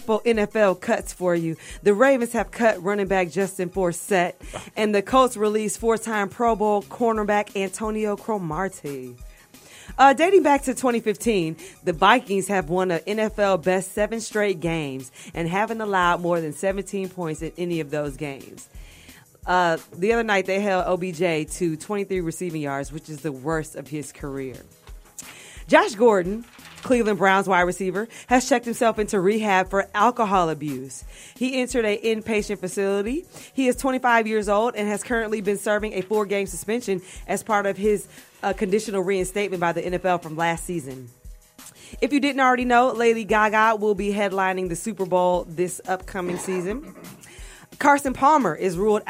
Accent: American